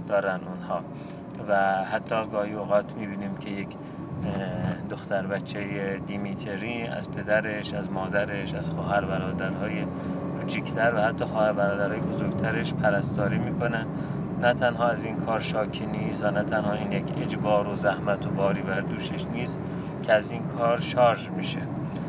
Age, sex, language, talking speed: 30-49, male, Persian, 140 wpm